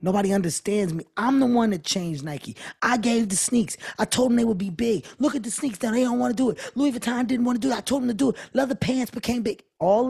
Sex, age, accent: male, 20-39, American